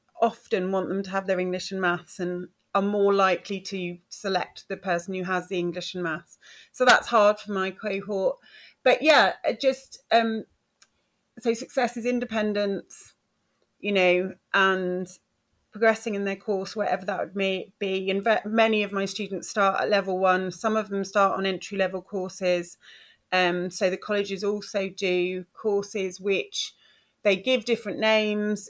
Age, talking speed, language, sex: 30-49, 160 wpm, English, female